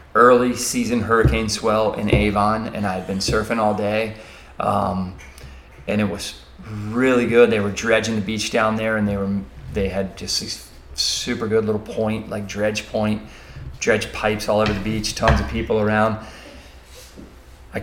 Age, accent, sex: 30-49, American, male